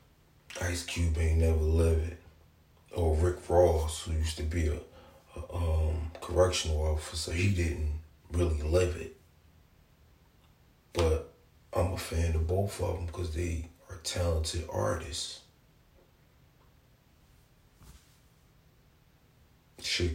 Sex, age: male, 30-49